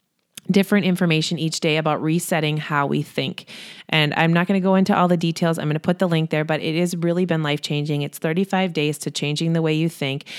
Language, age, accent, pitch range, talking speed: English, 30-49, American, 150-185 Hz, 235 wpm